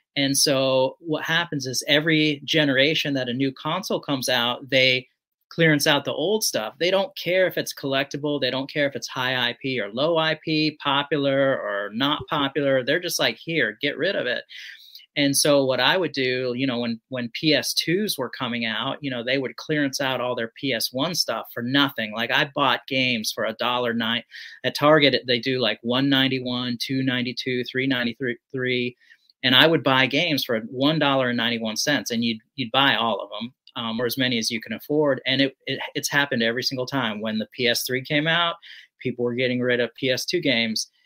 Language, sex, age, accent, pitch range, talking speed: English, male, 30-49, American, 125-150 Hz, 200 wpm